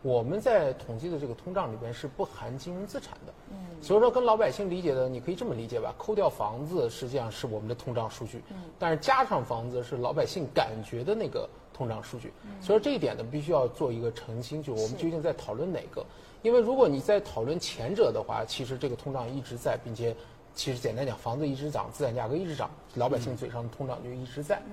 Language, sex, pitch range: Chinese, male, 120-180 Hz